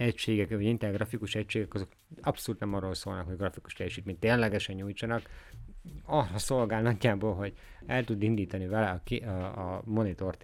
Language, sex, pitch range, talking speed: Hungarian, male, 90-115 Hz, 160 wpm